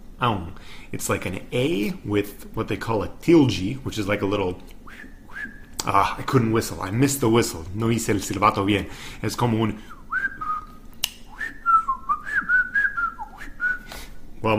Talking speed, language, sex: 130 wpm, English, male